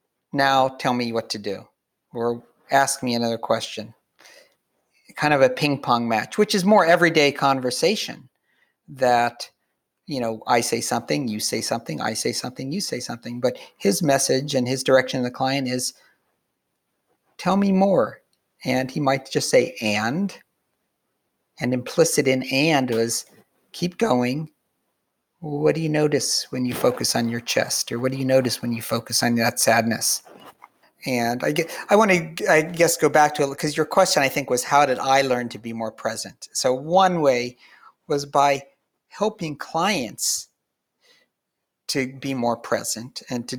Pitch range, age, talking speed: 120-150 Hz, 50-69, 170 wpm